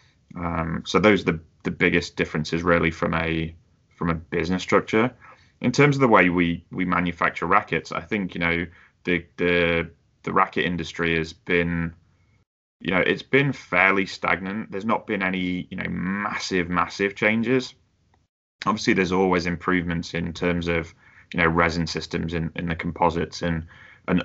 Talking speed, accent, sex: 165 wpm, British, male